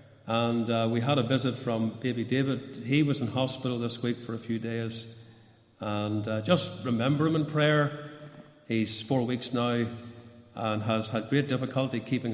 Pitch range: 110-130 Hz